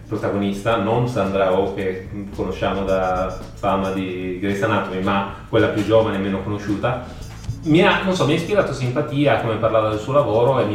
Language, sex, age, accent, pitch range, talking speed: Italian, male, 30-49, native, 100-125 Hz, 190 wpm